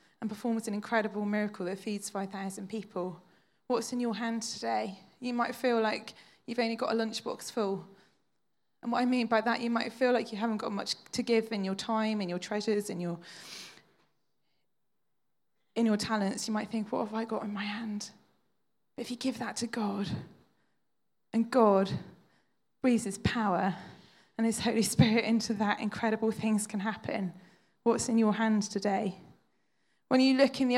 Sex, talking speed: female, 180 wpm